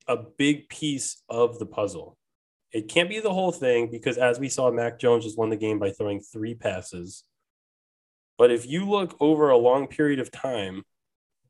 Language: English